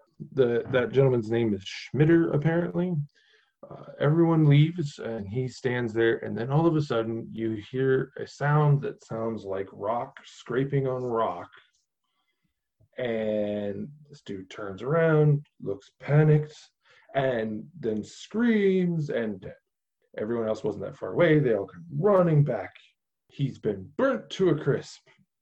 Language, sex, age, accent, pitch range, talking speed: English, male, 20-39, American, 115-155 Hz, 140 wpm